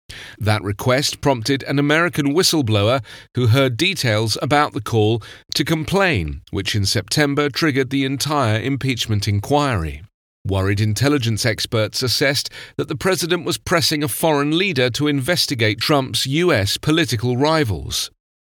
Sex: male